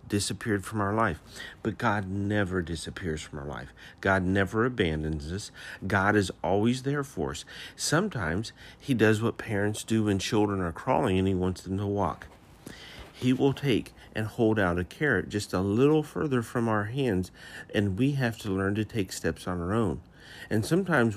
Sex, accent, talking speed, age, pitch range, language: male, American, 185 wpm, 50-69, 90-115 Hz, English